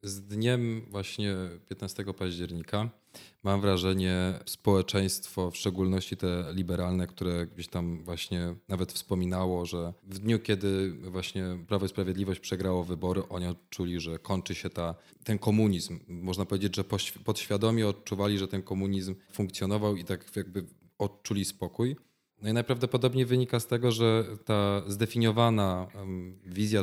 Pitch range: 90-110 Hz